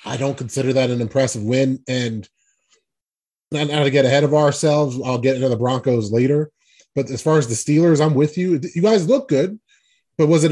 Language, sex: English, male